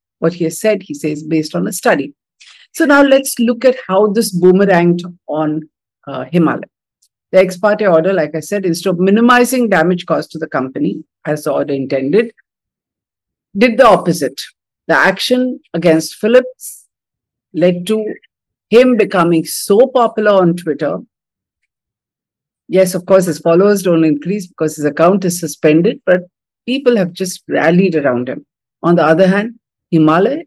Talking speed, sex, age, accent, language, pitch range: 155 wpm, female, 50-69, Indian, English, 170-230 Hz